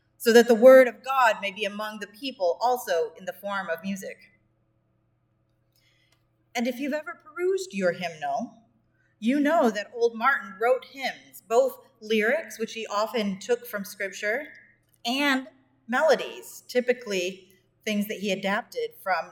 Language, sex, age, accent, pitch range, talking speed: English, female, 30-49, American, 185-240 Hz, 145 wpm